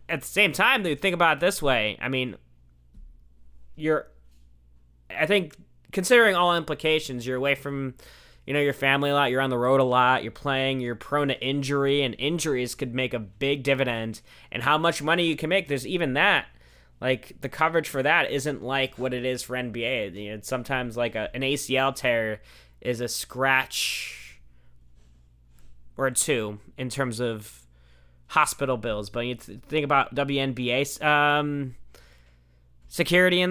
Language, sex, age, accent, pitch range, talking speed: English, male, 20-39, American, 110-140 Hz, 170 wpm